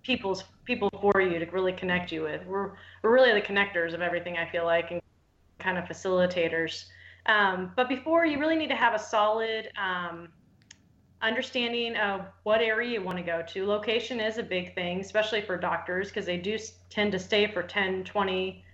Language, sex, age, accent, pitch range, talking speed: English, female, 20-39, American, 175-215 Hz, 190 wpm